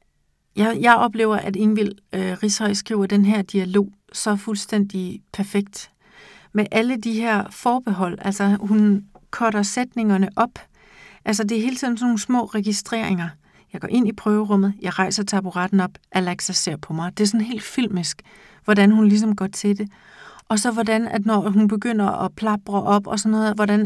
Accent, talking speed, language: native, 180 wpm, Danish